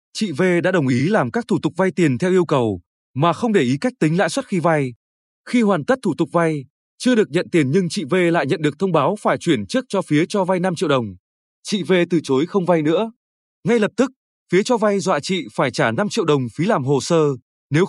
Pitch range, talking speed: 155-205 Hz, 260 wpm